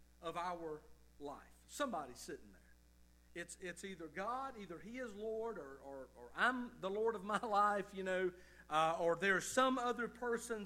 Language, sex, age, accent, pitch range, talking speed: English, male, 50-69, American, 170-245 Hz, 175 wpm